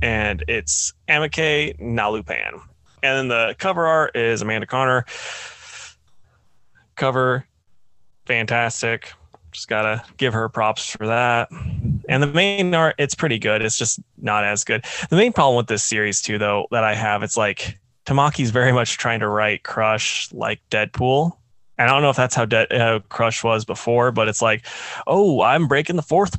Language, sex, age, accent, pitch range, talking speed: English, male, 20-39, American, 110-125 Hz, 170 wpm